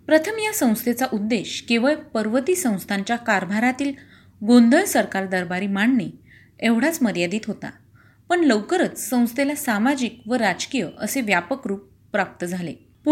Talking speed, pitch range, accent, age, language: 55 wpm, 200-270 Hz, native, 30-49, Marathi